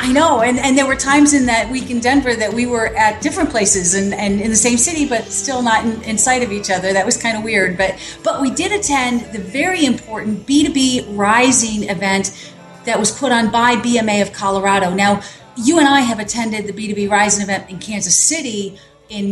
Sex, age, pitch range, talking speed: female, 40-59, 195-240 Hz, 215 wpm